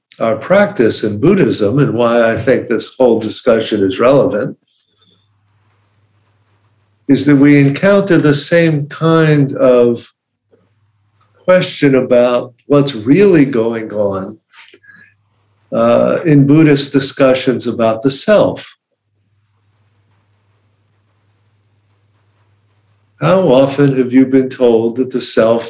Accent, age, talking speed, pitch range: American, 50-69, 100 wpm, 105-130 Hz